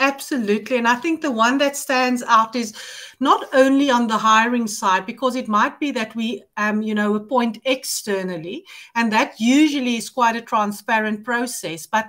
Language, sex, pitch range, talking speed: English, female, 215-275 Hz, 180 wpm